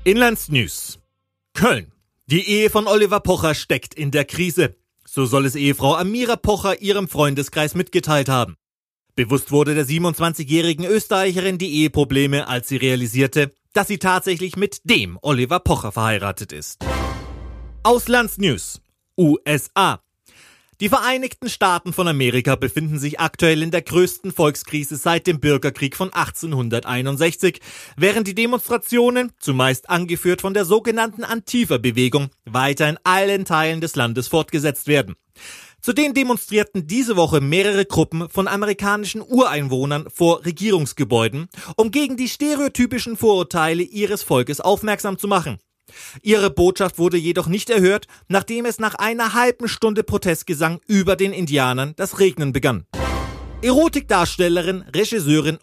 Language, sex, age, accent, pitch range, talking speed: German, male, 30-49, German, 145-210 Hz, 125 wpm